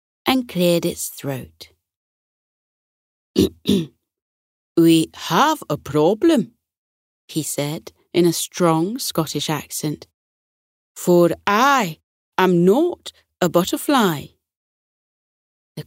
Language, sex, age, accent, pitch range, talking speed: English, female, 30-49, British, 140-230 Hz, 85 wpm